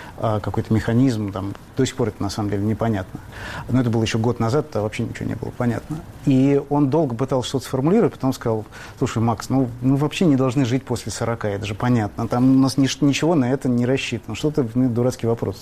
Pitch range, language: 115-140 Hz, Russian